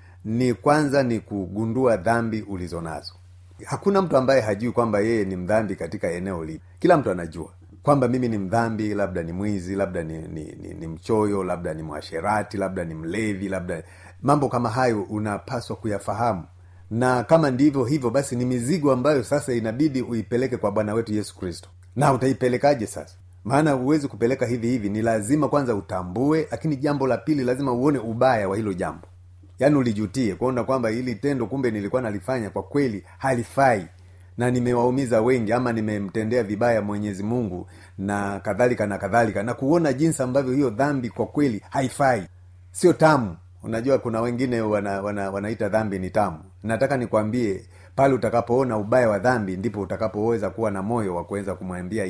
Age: 40-59